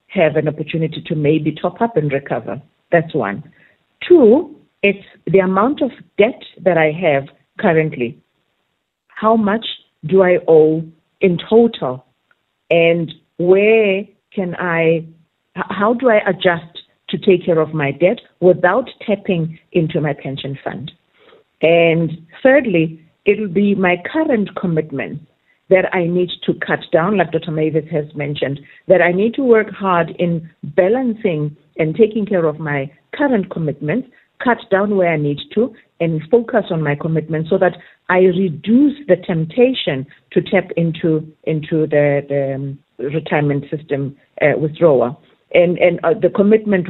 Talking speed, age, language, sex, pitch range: 145 wpm, 50-69, English, female, 155-195 Hz